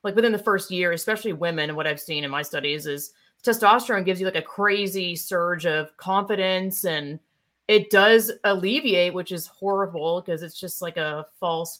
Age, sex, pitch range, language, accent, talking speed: 30-49, female, 165-200 Hz, English, American, 185 wpm